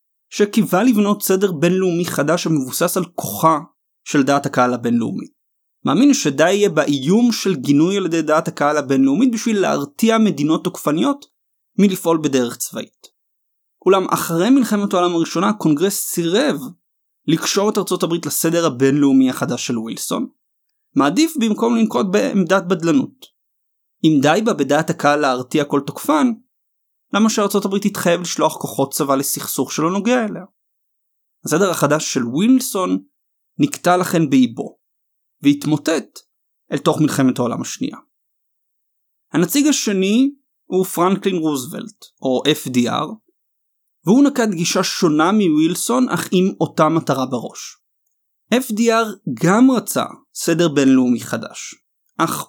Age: 30-49